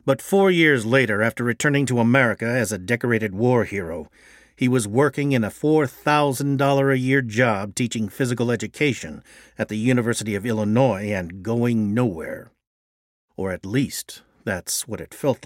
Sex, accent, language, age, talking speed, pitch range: male, American, English, 50-69, 150 wpm, 100-140 Hz